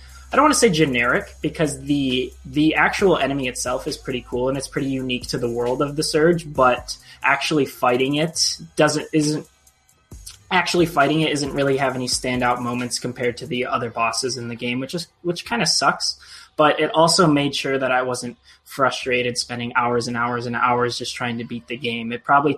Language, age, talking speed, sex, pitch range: English, 20-39, 205 wpm, male, 125-150 Hz